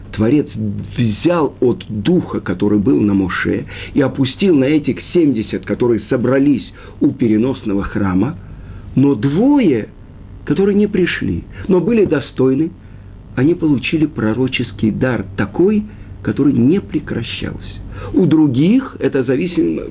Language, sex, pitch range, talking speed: Russian, male, 100-140 Hz, 115 wpm